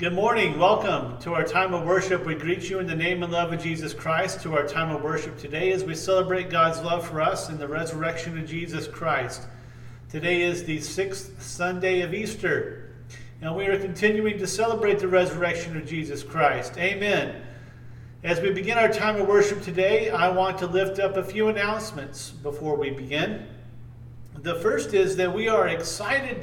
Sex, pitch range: male, 140-185 Hz